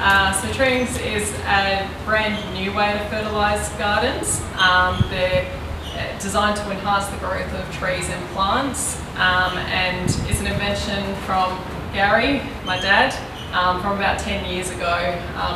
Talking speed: 150 wpm